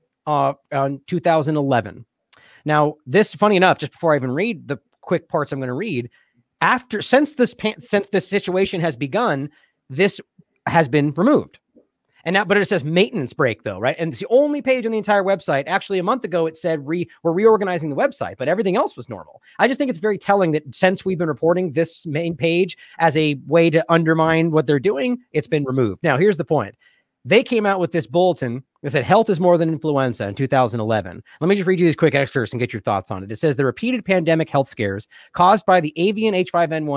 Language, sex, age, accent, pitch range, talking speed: English, male, 30-49, American, 140-190 Hz, 220 wpm